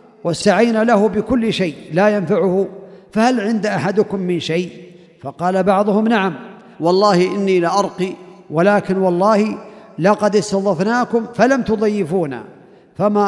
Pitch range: 180-215 Hz